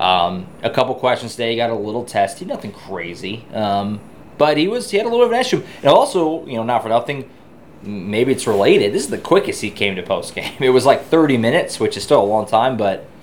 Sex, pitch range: male, 105-130 Hz